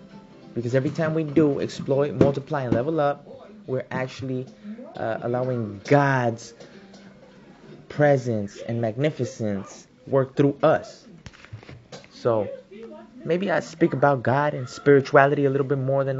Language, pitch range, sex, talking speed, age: English, 115-140 Hz, male, 125 wpm, 20-39